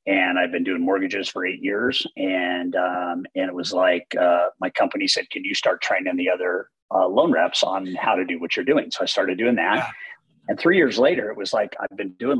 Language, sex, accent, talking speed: English, male, American, 235 wpm